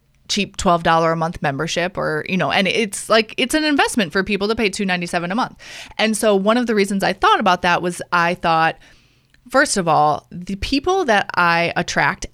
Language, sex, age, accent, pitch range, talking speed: English, female, 20-39, American, 175-230 Hz, 220 wpm